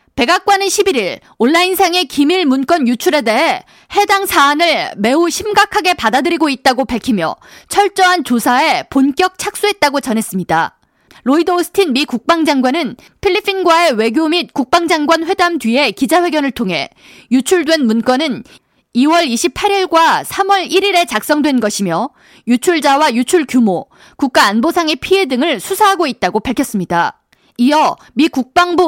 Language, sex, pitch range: Korean, female, 255-360 Hz